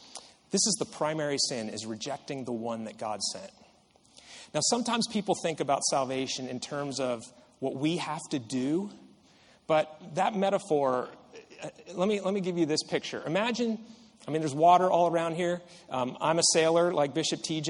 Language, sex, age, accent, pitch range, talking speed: English, male, 30-49, American, 145-190 Hz, 175 wpm